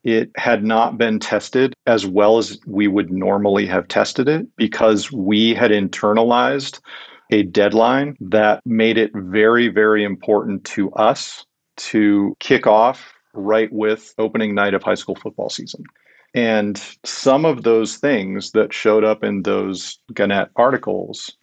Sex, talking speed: male, 145 wpm